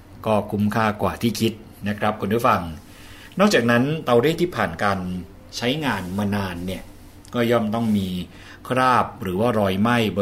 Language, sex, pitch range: Thai, male, 95-115 Hz